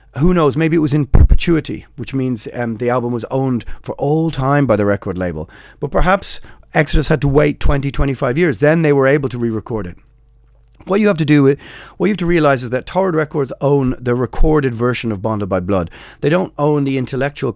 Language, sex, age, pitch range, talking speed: English, male, 30-49, 115-145 Hz, 220 wpm